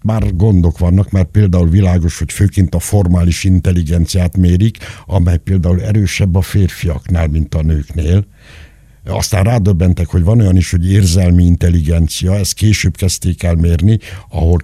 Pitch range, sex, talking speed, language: 85-110 Hz, male, 145 wpm, Hungarian